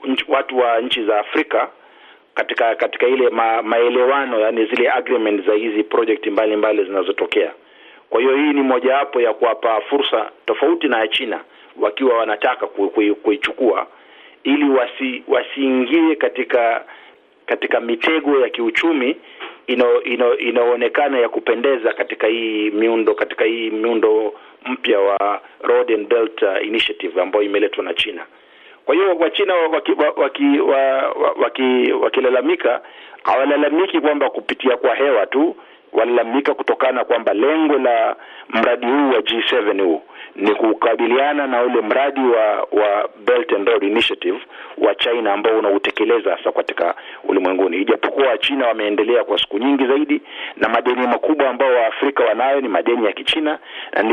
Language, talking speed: Swahili, 140 wpm